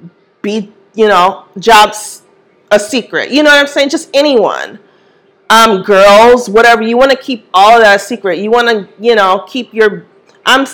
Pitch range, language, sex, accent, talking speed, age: 205-275 Hz, English, female, American, 180 wpm, 40-59